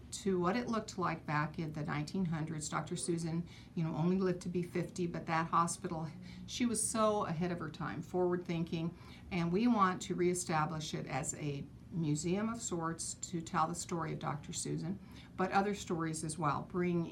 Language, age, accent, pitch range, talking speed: English, 50-69, American, 155-175 Hz, 190 wpm